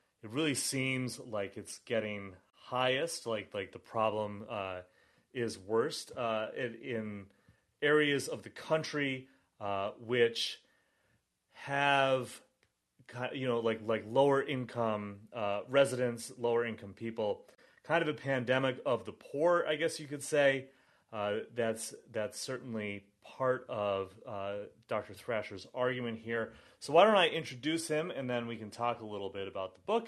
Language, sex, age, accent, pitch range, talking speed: English, male, 30-49, American, 105-130 Hz, 150 wpm